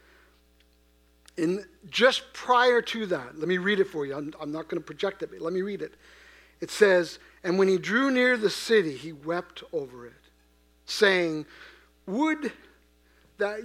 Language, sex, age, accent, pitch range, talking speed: English, male, 50-69, American, 145-210 Hz, 170 wpm